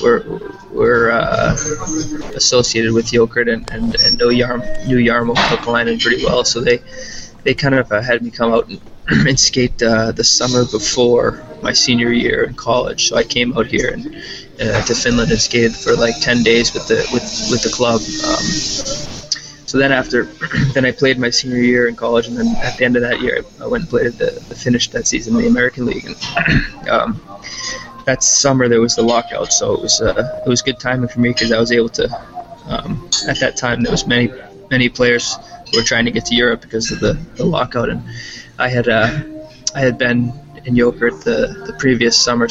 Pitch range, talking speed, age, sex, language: 115-130 Hz, 205 wpm, 20-39, male, Finnish